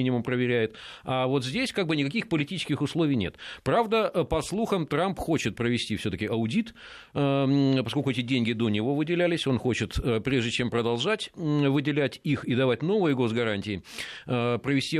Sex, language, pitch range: male, Russian, 115-160 Hz